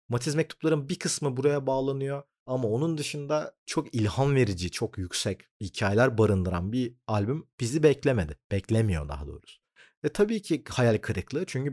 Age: 40-59